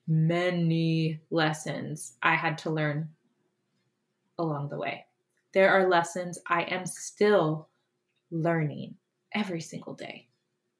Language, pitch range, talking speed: English, 170-235 Hz, 105 wpm